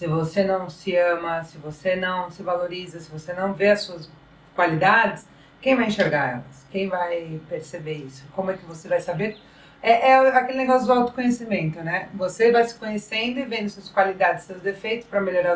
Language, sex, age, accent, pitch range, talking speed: Portuguese, female, 40-59, Brazilian, 155-210 Hz, 195 wpm